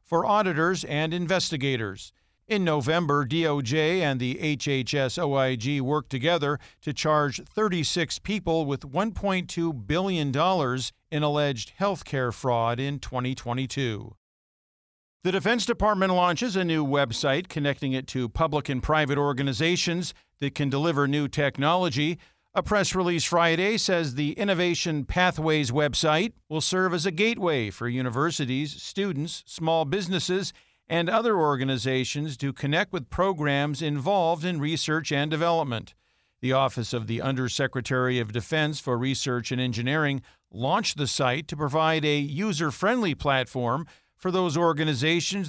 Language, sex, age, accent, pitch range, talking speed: English, male, 50-69, American, 135-175 Hz, 130 wpm